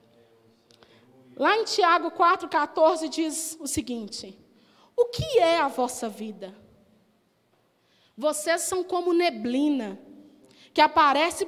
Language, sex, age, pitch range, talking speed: Portuguese, female, 20-39, 225-320 Hz, 100 wpm